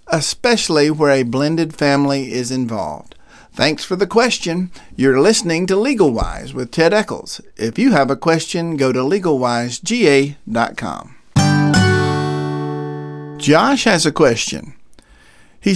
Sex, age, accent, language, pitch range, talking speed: male, 50-69, American, English, 135-190 Hz, 120 wpm